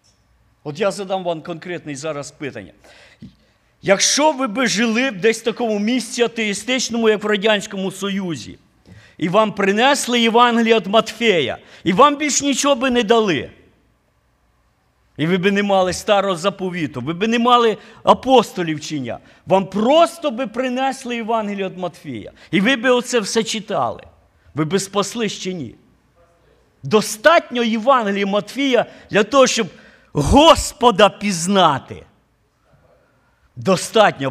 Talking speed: 130 wpm